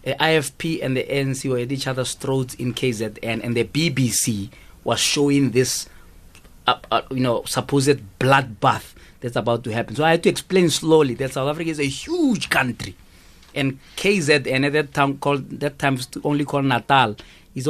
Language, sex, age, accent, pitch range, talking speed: English, male, 30-49, South African, 130-165 Hz, 185 wpm